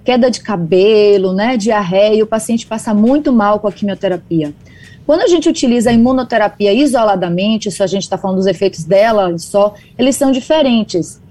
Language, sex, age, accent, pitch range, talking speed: Portuguese, female, 20-39, Brazilian, 205-265 Hz, 175 wpm